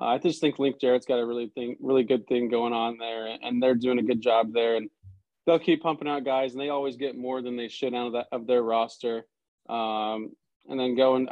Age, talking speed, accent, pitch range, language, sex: 20-39, 240 wpm, American, 120-140 Hz, English, male